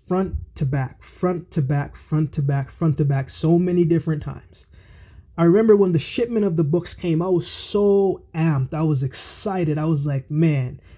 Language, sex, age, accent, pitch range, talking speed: English, male, 20-39, American, 140-180 Hz, 195 wpm